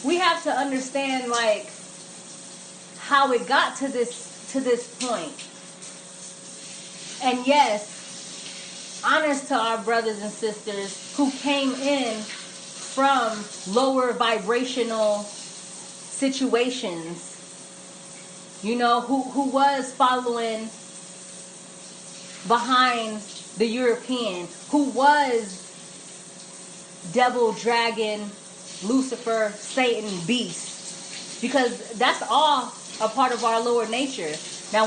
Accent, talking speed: American, 95 wpm